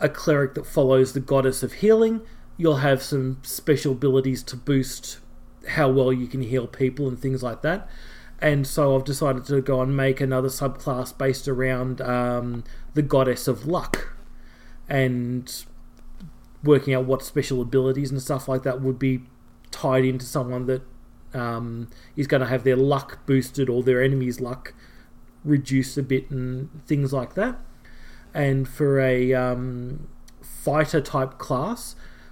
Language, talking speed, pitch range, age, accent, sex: English, 155 wpm, 125-140 Hz, 30-49, Australian, male